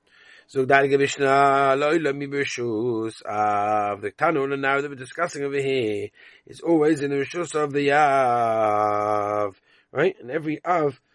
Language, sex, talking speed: English, male, 125 wpm